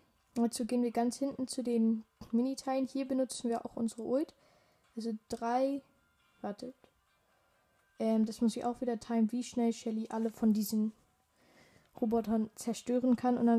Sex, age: female, 20-39